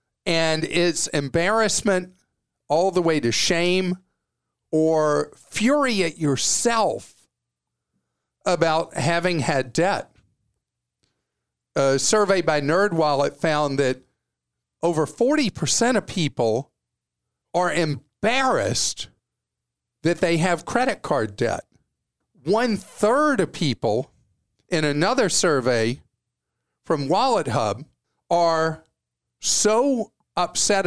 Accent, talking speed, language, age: American, 90 wpm, English, 50-69